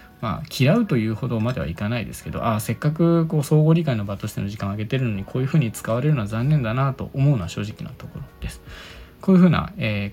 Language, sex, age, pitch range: Japanese, male, 20-39, 110-170 Hz